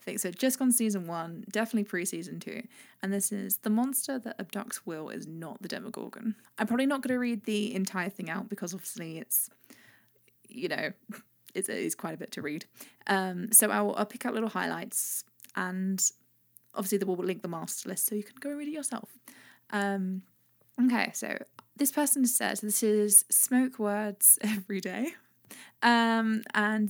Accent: British